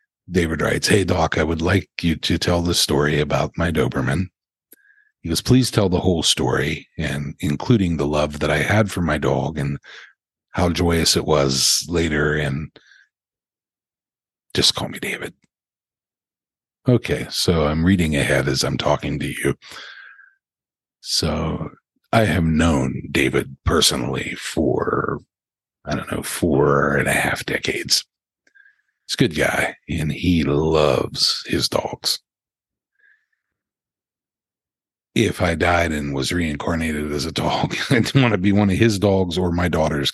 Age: 50-69